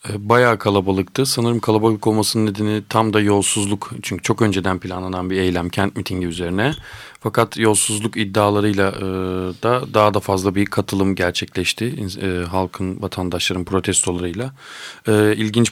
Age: 40-59